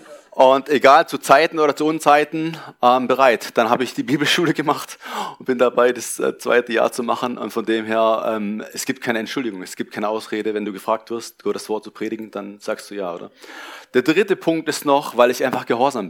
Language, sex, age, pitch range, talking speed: German, male, 30-49, 110-140 Hz, 210 wpm